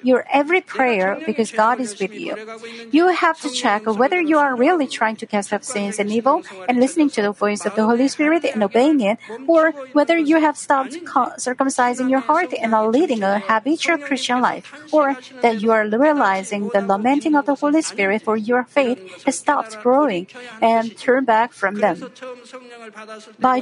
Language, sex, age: Korean, female, 50-69